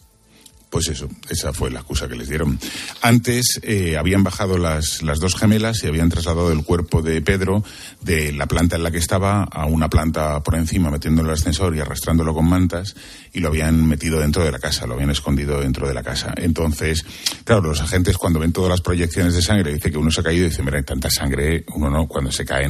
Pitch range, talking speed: 75-100 Hz, 230 wpm